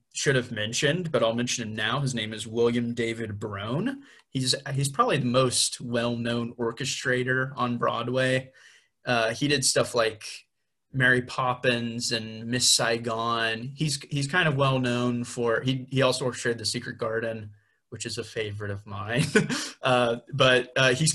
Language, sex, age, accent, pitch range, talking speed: English, male, 30-49, American, 115-130 Hz, 160 wpm